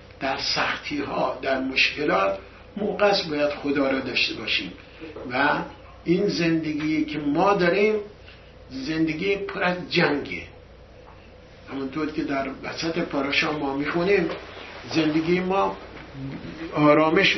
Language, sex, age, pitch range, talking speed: English, male, 60-79, 130-180 Hz, 105 wpm